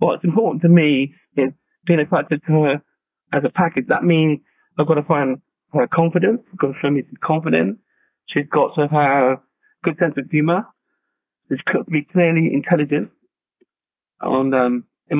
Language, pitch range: English, 140-175 Hz